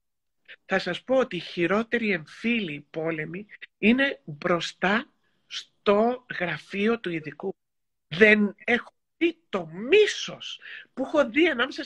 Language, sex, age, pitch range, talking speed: Greek, male, 60-79, 180-270 Hz, 115 wpm